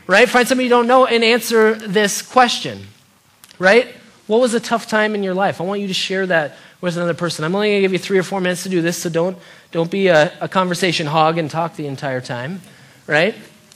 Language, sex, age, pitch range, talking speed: English, male, 20-39, 170-240 Hz, 240 wpm